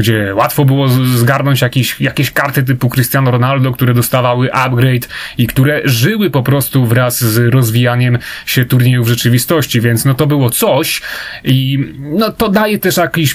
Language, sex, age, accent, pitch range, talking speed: Polish, male, 30-49, native, 125-145 Hz, 160 wpm